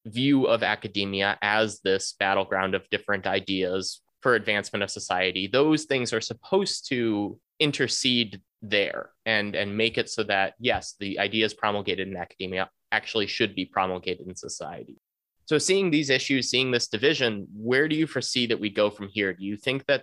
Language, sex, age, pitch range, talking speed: English, male, 20-39, 105-130 Hz, 175 wpm